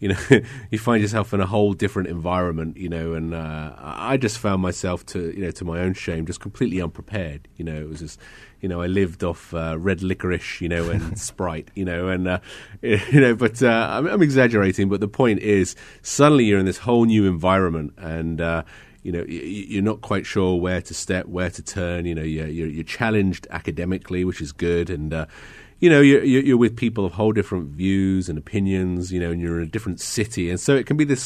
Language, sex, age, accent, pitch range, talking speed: English, male, 30-49, British, 85-105 Hz, 225 wpm